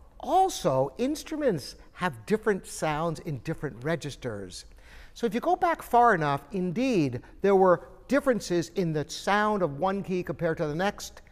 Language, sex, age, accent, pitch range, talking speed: English, male, 50-69, American, 155-215 Hz, 155 wpm